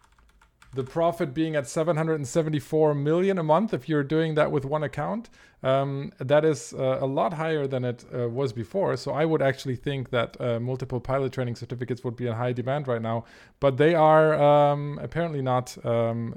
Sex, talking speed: male, 190 wpm